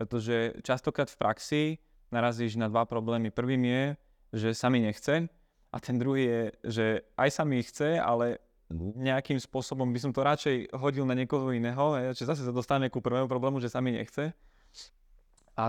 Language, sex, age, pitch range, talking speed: Slovak, male, 20-39, 115-135 Hz, 170 wpm